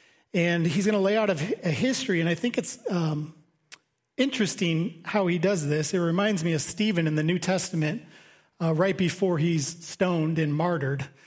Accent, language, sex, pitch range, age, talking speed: American, English, male, 160-190 Hz, 40-59, 180 wpm